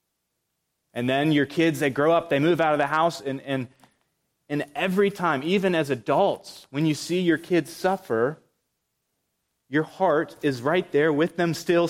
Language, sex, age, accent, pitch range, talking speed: English, male, 30-49, American, 135-170 Hz, 175 wpm